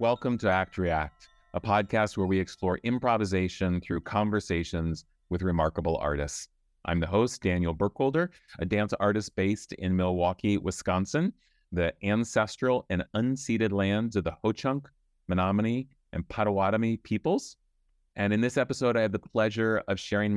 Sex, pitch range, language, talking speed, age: male, 90-115 Hz, English, 145 wpm, 30-49